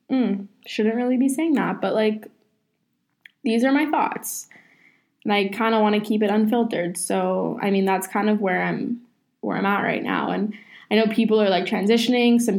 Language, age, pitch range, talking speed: English, 10-29, 195-235 Hz, 200 wpm